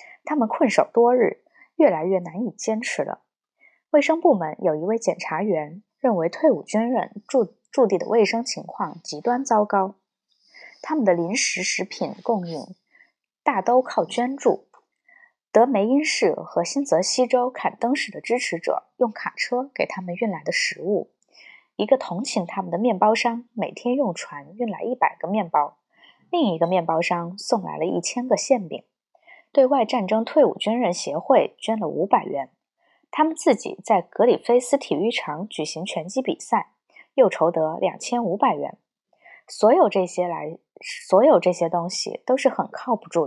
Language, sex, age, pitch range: Chinese, female, 20-39, 190-275 Hz